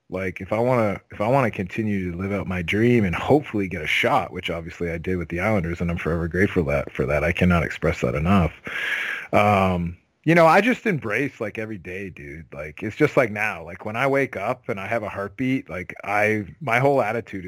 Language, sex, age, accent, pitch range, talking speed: English, male, 30-49, American, 95-115 Hz, 240 wpm